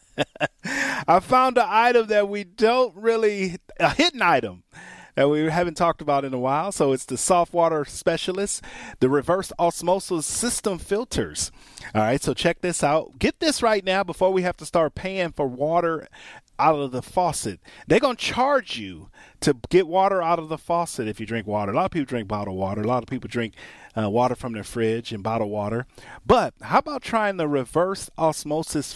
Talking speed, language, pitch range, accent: 195 wpm, English, 125-180 Hz, American